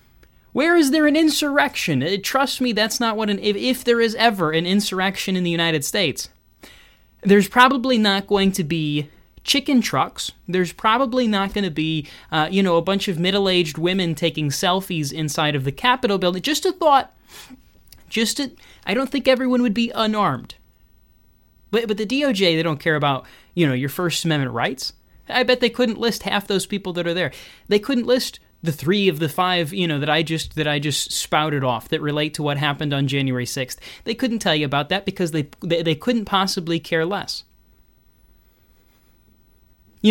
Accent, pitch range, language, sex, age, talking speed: American, 150-220 Hz, English, male, 20-39, 190 wpm